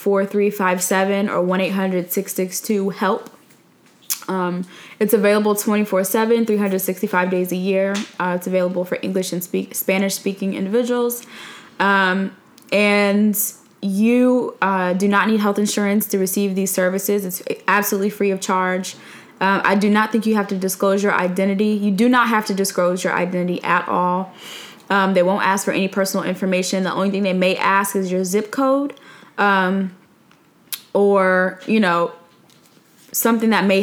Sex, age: female, 10-29